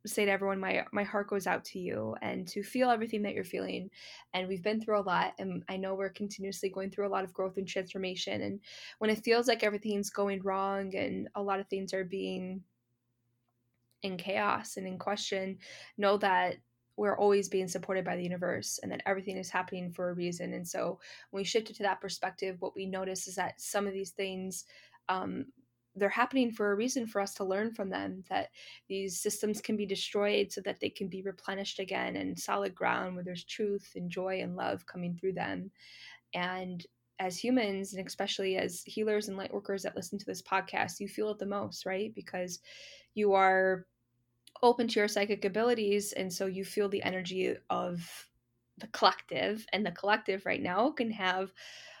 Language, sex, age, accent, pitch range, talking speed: English, female, 10-29, American, 185-205 Hz, 200 wpm